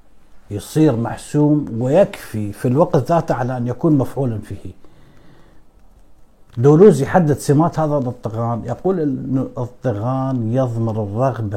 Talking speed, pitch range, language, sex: 110 wpm, 115-145 Hz, Arabic, male